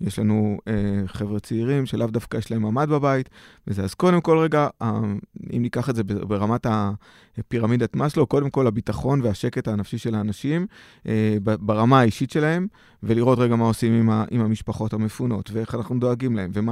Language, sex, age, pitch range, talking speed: Hebrew, male, 20-39, 110-130 Hz, 180 wpm